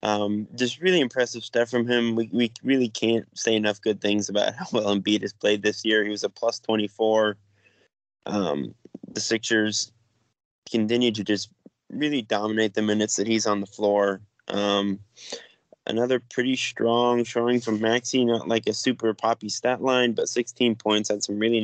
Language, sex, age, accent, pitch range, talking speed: English, male, 20-39, American, 105-120 Hz, 175 wpm